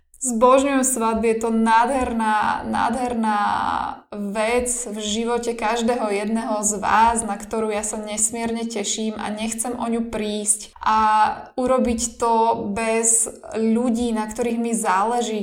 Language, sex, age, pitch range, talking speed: Slovak, female, 10-29, 210-235 Hz, 130 wpm